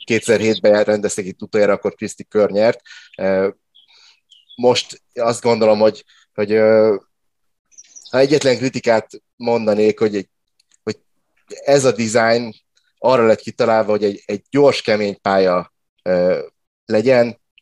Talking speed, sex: 105 wpm, male